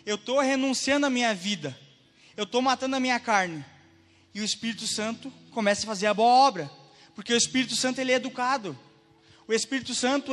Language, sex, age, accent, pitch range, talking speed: Portuguese, male, 20-39, Brazilian, 175-245 Hz, 185 wpm